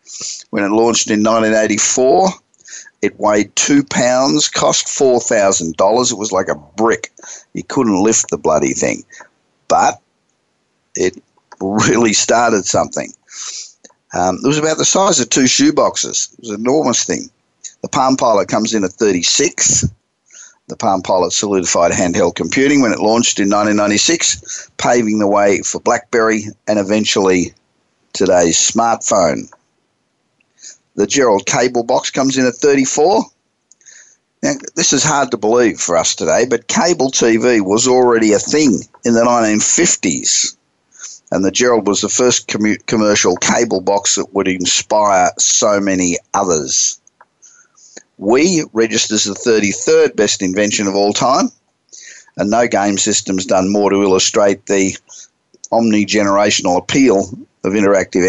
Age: 50-69